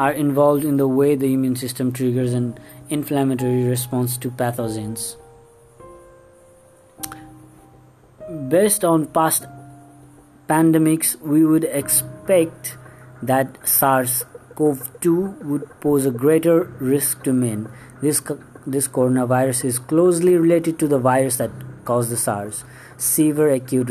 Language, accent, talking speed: English, Indian, 115 wpm